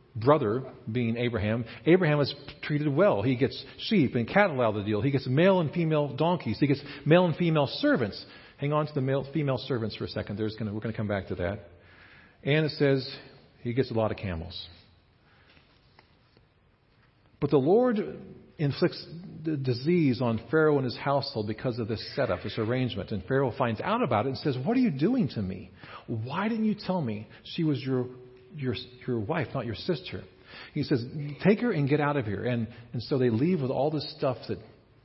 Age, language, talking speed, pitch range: 40-59, English, 205 wpm, 110-150 Hz